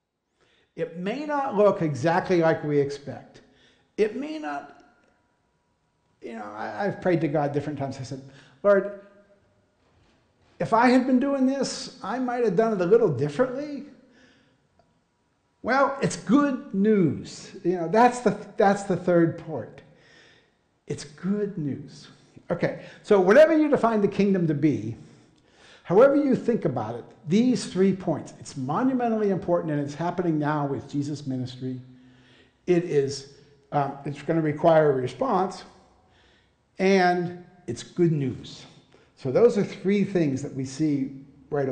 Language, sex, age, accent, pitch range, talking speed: English, male, 60-79, American, 145-220 Hz, 140 wpm